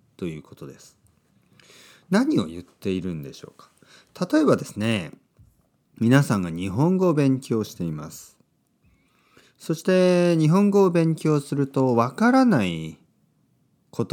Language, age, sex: Japanese, 40-59, male